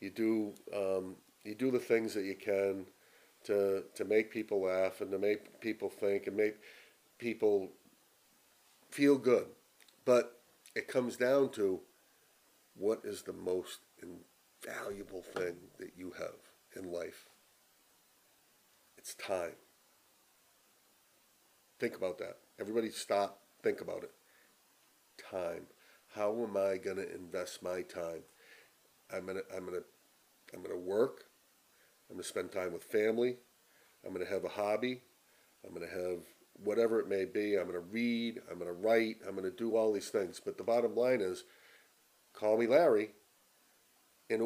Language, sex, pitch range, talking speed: English, male, 100-130 Hz, 155 wpm